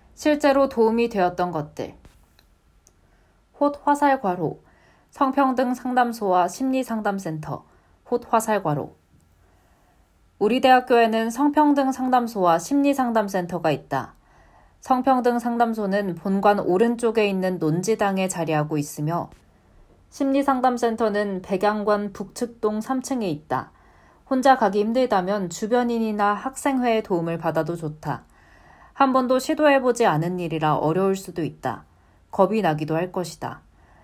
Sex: female